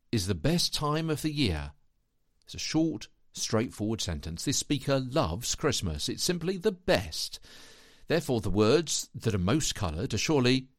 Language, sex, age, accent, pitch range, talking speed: English, male, 50-69, British, 95-160 Hz, 160 wpm